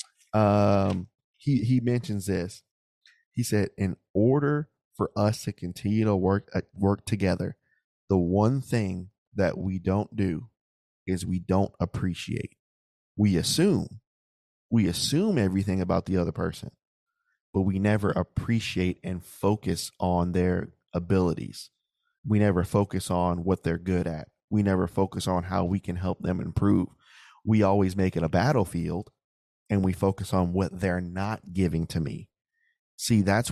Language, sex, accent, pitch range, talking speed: English, male, American, 90-110 Hz, 150 wpm